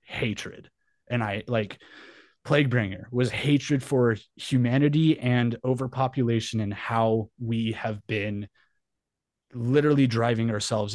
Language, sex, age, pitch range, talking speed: English, male, 20-39, 110-130 Hz, 110 wpm